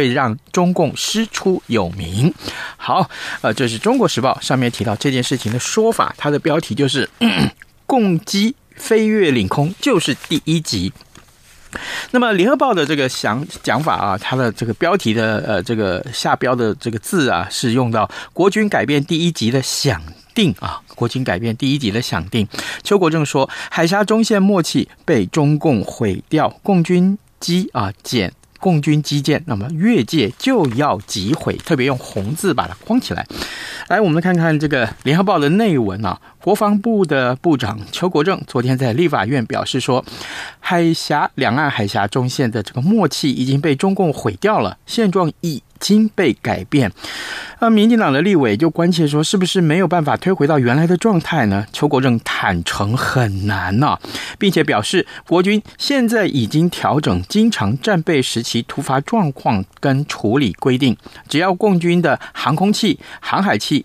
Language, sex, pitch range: Chinese, male, 125-190 Hz